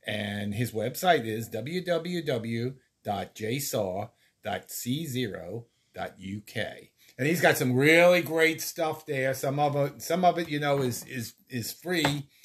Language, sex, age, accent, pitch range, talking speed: English, male, 50-69, American, 115-180 Hz, 105 wpm